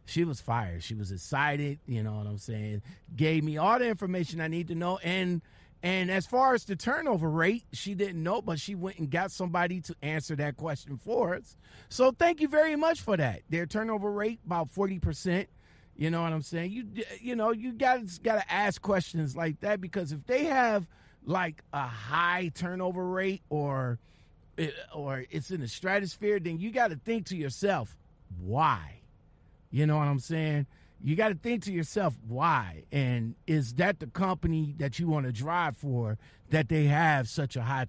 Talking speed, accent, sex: 195 wpm, American, male